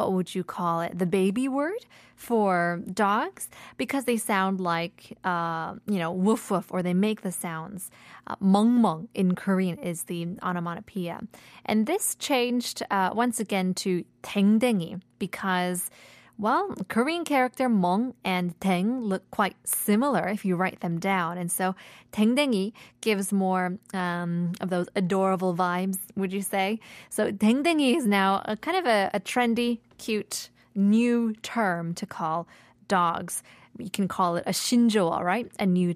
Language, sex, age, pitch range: Korean, female, 20-39, 180-230 Hz